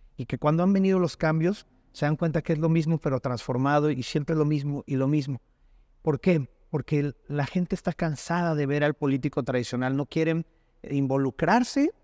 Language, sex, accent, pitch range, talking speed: Spanish, male, Mexican, 135-165 Hz, 190 wpm